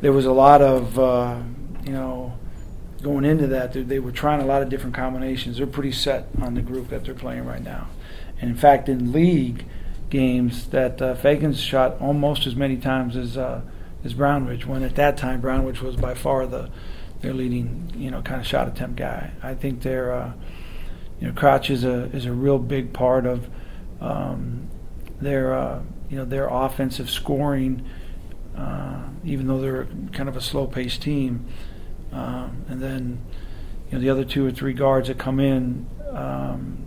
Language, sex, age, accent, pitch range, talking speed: English, male, 40-59, American, 120-135 Hz, 185 wpm